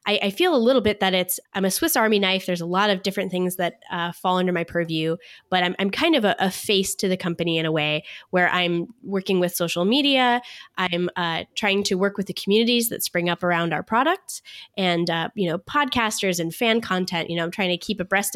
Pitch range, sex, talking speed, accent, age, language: 175-215 Hz, female, 240 wpm, American, 10-29, English